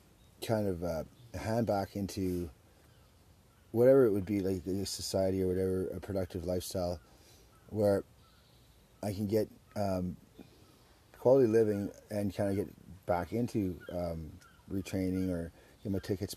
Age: 30-49